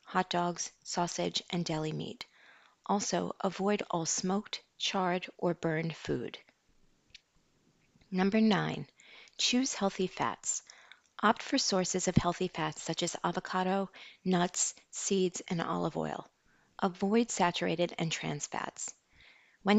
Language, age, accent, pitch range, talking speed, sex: English, 40-59, American, 165-200 Hz, 120 wpm, female